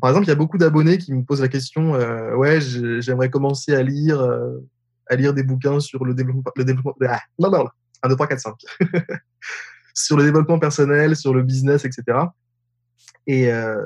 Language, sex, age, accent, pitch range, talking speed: French, male, 20-39, French, 125-155 Hz, 150 wpm